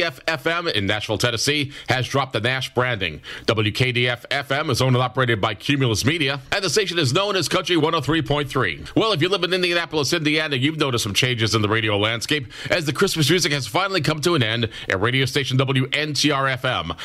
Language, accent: English, American